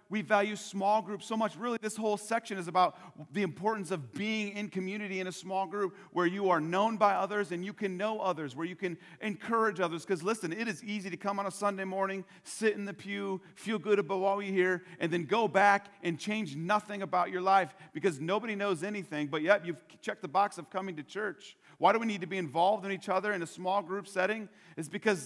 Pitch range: 165-200 Hz